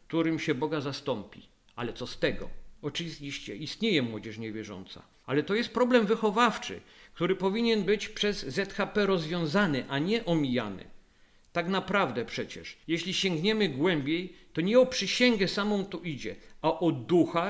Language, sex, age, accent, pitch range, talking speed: Polish, male, 50-69, native, 155-195 Hz, 145 wpm